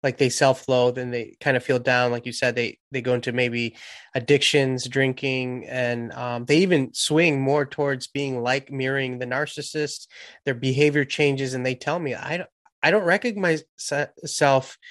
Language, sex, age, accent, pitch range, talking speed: English, male, 20-39, American, 130-155 Hz, 180 wpm